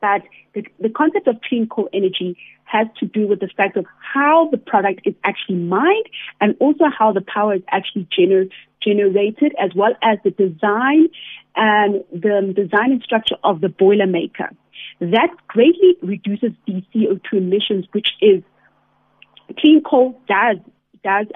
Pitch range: 190-245 Hz